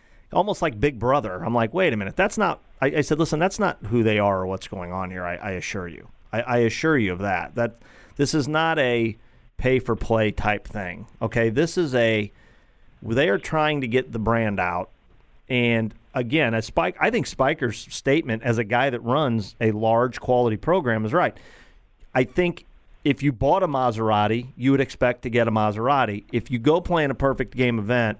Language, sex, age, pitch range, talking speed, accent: English, male, 40-59, 110-135 Hz, 210 wpm, American